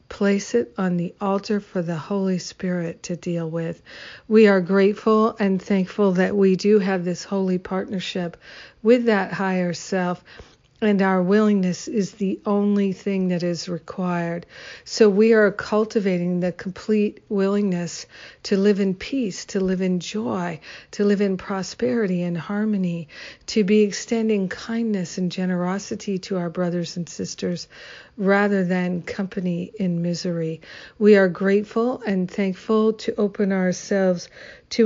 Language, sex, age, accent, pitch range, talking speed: English, female, 50-69, American, 180-210 Hz, 145 wpm